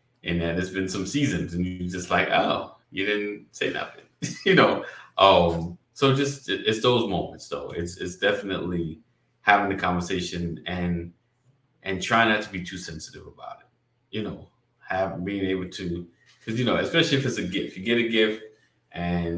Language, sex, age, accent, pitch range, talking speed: English, male, 20-39, American, 95-125 Hz, 190 wpm